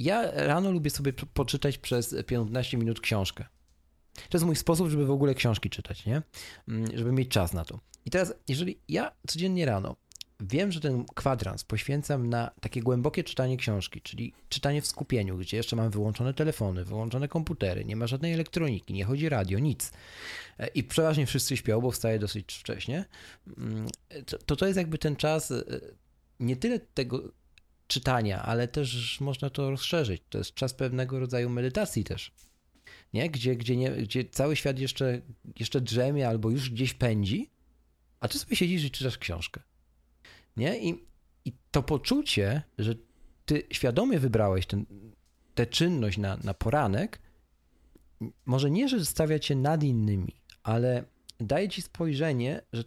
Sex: male